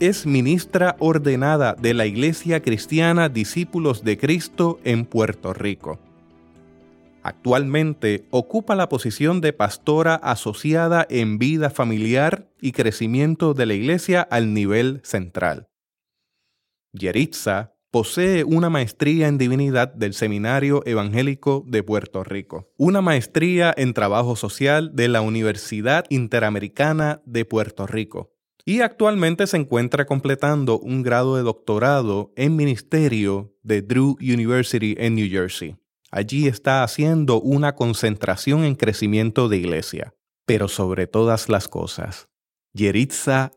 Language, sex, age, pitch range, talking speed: Spanish, male, 30-49, 105-145 Hz, 120 wpm